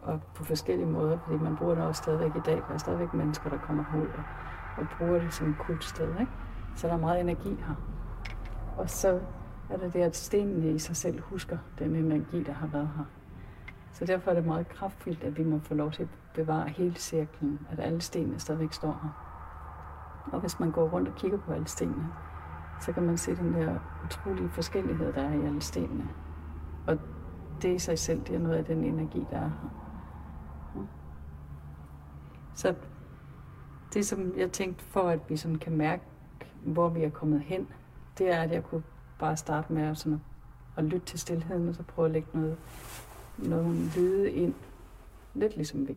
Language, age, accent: Danish, 60-79, native